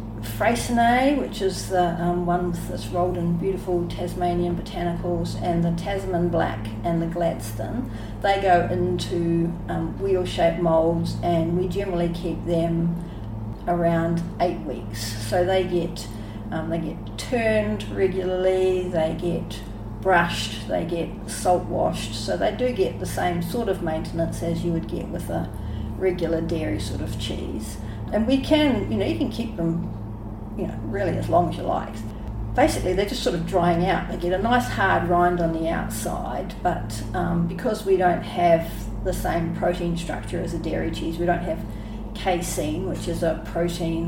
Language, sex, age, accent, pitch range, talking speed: English, female, 40-59, Australian, 110-180 Hz, 165 wpm